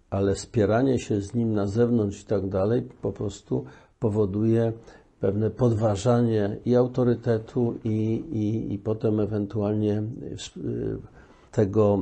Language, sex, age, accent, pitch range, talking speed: Polish, male, 50-69, native, 100-115 Hz, 115 wpm